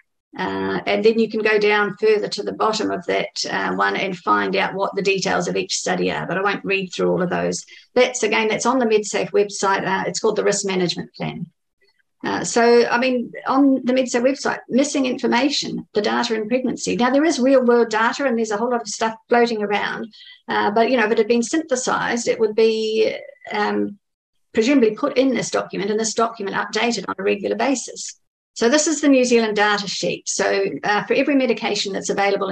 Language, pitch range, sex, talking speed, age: English, 195-250 Hz, female, 215 wpm, 50-69